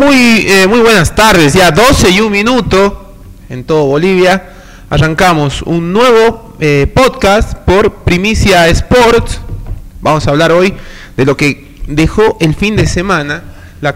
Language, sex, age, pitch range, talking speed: English, male, 30-49, 145-185 Hz, 145 wpm